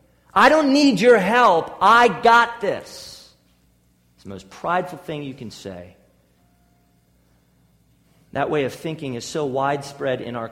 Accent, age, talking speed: American, 40-59, 145 wpm